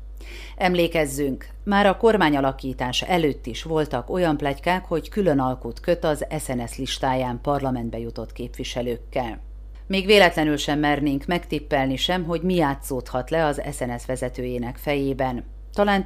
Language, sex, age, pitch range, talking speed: Hungarian, female, 40-59, 130-170 Hz, 125 wpm